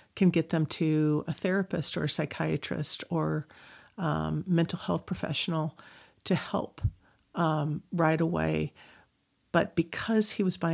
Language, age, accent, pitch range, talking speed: English, 50-69, American, 155-185 Hz, 135 wpm